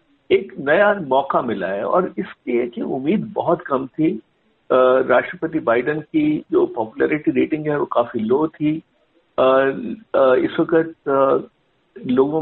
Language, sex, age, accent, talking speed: Hindi, male, 60-79, native, 130 wpm